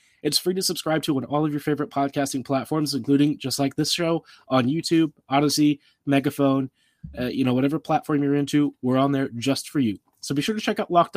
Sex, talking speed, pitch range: male, 220 wpm, 125-150 Hz